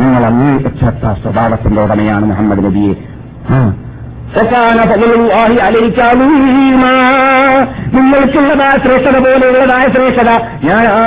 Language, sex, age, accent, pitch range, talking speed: Malayalam, male, 50-69, native, 220-270 Hz, 115 wpm